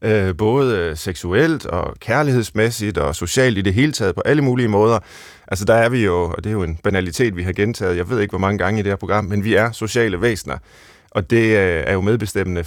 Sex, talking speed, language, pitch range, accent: male, 225 wpm, Danish, 95-115 Hz, native